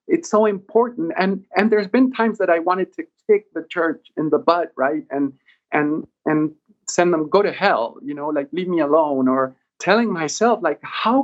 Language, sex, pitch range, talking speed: English, male, 145-215 Hz, 205 wpm